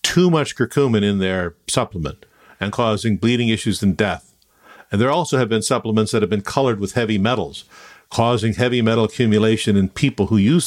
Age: 50-69